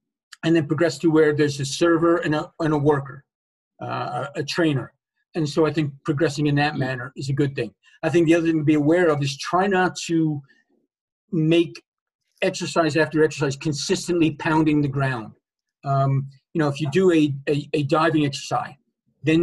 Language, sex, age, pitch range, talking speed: English, male, 40-59, 140-165 Hz, 190 wpm